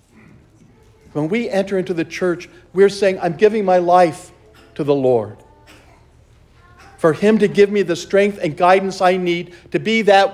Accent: American